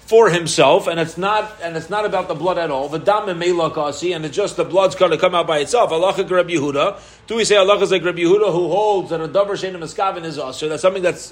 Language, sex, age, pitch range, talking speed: English, male, 40-59, 165-220 Hz, 260 wpm